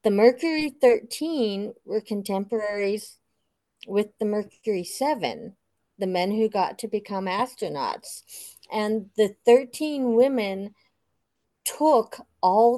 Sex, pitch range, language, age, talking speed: female, 190-240 Hz, English, 50-69, 105 wpm